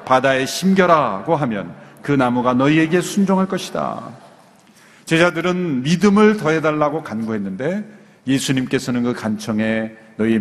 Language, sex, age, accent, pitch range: Korean, male, 40-59, native, 135-205 Hz